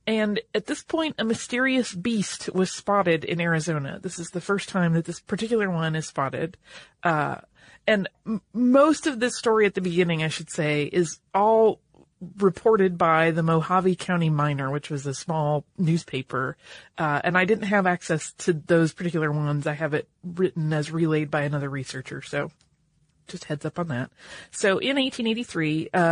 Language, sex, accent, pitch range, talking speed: English, female, American, 155-190 Hz, 170 wpm